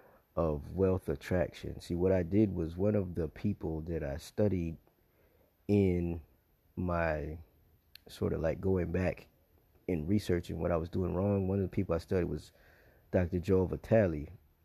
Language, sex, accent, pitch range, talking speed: English, male, American, 75-90 Hz, 160 wpm